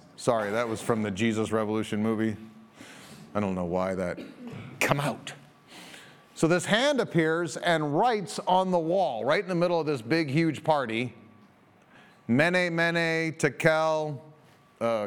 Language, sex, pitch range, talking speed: English, male, 135-175 Hz, 145 wpm